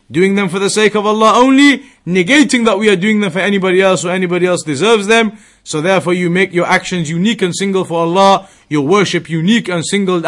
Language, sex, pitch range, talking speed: English, male, 175-205 Hz, 220 wpm